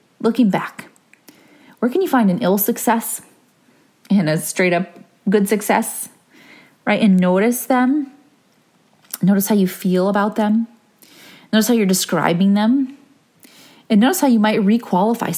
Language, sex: English, female